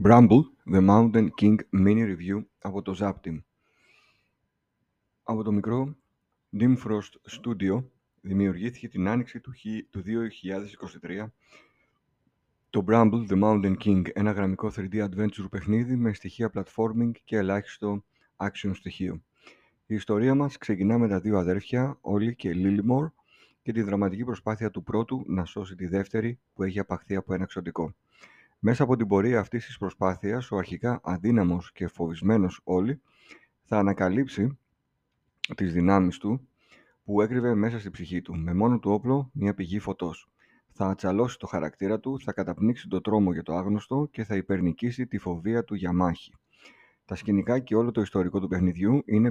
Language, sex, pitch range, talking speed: Greek, male, 95-115 Hz, 150 wpm